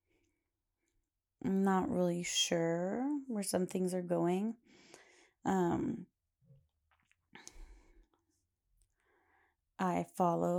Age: 20-39